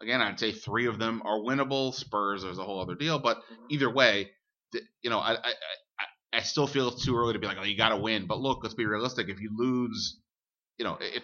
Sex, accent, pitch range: male, American, 100-120 Hz